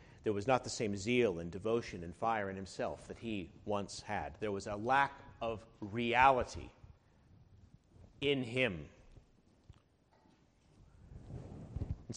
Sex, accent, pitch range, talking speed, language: male, American, 100-150 Hz, 125 wpm, English